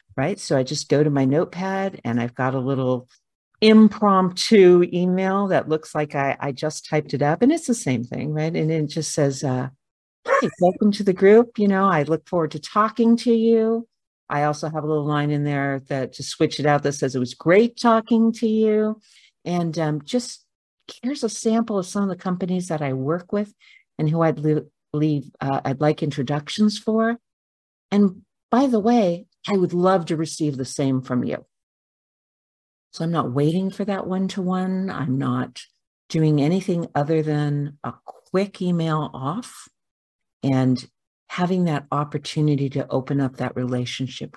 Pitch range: 135-190 Hz